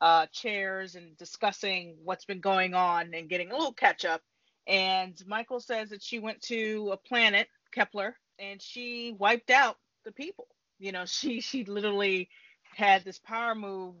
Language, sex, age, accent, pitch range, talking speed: English, female, 30-49, American, 180-225 Hz, 165 wpm